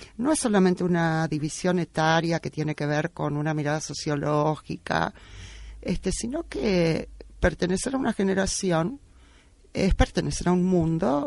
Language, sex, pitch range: Spanish, female, 150-200 Hz